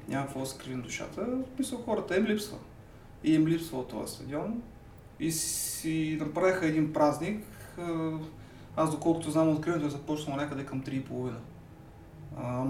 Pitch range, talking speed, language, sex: 130-160 Hz, 130 wpm, Bulgarian, male